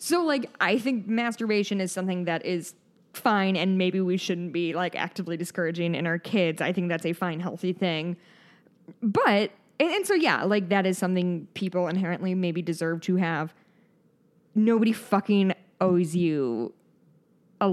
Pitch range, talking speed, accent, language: 175-215 Hz, 160 wpm, American, English